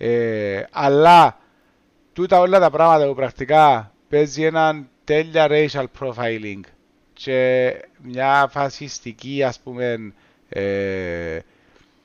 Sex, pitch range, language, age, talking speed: male, 125-170 Hz, Greek, 30-49, 95 wpm